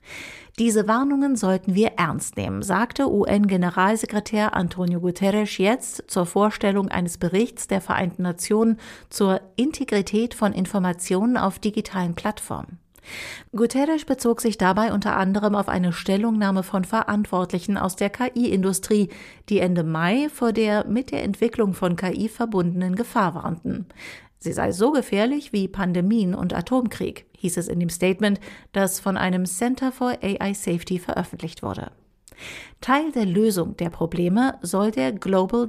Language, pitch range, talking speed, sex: German, 185-230 Hz, 140 wpm, female